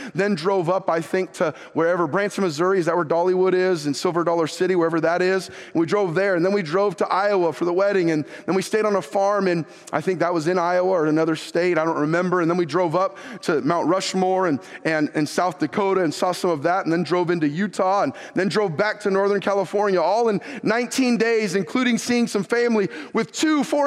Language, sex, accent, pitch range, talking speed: English, male, American, 155-195 Hz, 240 wpm